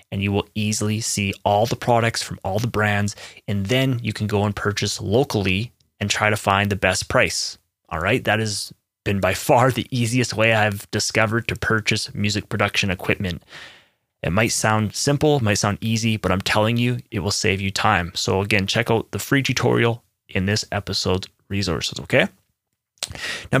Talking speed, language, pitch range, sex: 185 wpm, English, 100-125 Hz, male